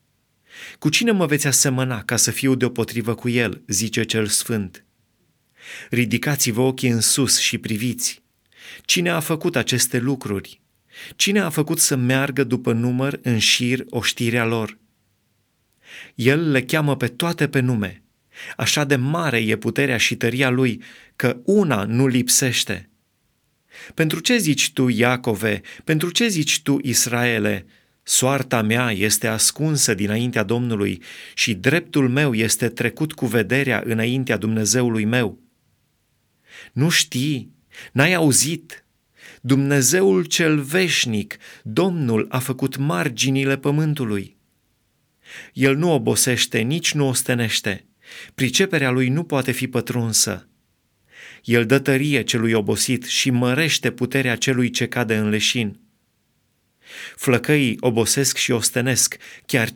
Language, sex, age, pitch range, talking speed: Romanian, male, 30-49, 115-140 Hz, 125 wpm